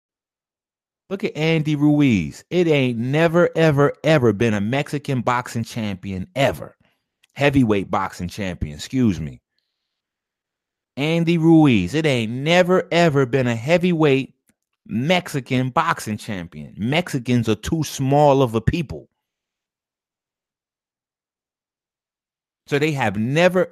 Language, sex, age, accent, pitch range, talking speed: English, male, 30-49, American, 120-170 Hz, 110 wpm